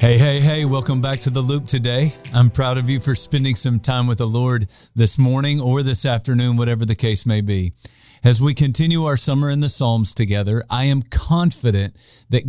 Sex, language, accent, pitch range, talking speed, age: male, English, American, 115-145 Hz, 205 wpm, 40-59